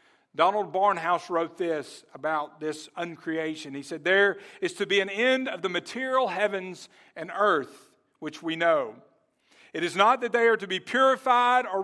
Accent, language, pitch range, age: American, English, 160-220 Hz, 50-69